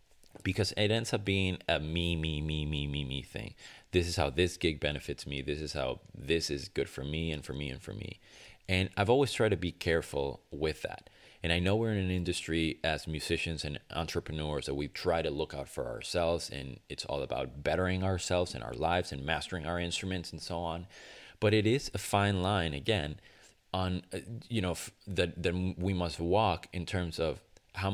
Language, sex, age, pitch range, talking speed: English, male, 30-49, 75-95 Hz, 210 wpm